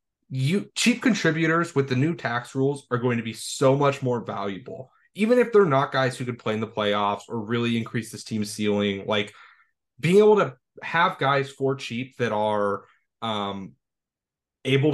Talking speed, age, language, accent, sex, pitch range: 180 wpm, 20-39, English, American, male, 115-140 Hz